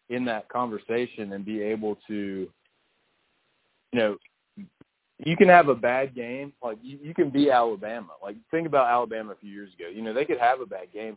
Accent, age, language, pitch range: American, 30-49, English, 105-135 Hz